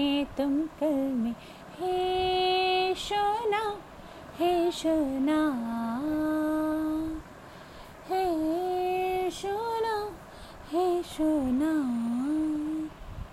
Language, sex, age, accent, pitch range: Hindi, female, 30-49, native, 310-370 Hz